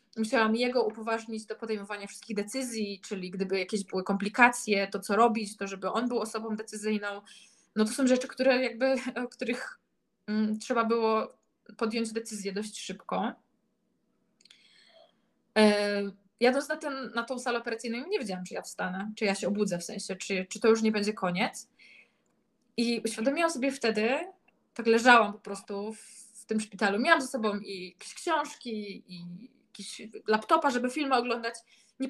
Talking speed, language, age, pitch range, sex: 160 wpm, Polish, 20-39, 210-250 Hz, female